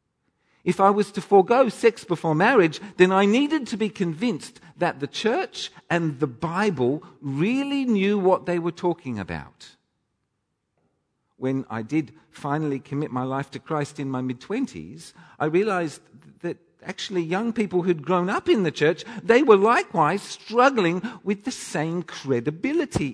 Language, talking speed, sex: English, 155 wpm, male